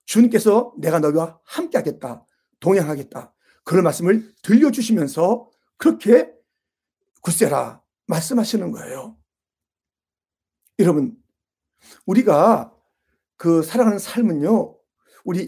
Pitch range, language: 170-255 Hz, Korean